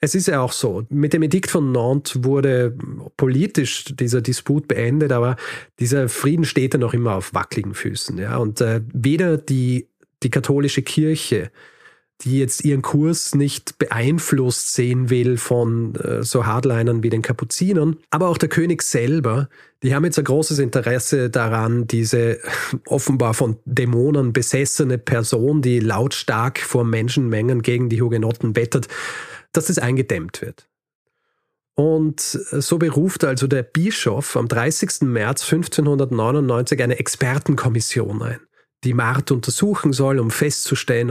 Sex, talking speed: male, 140 wpm